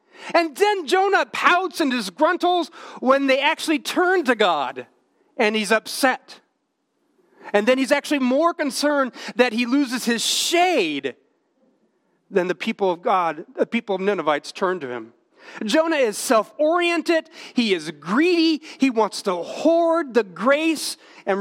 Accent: American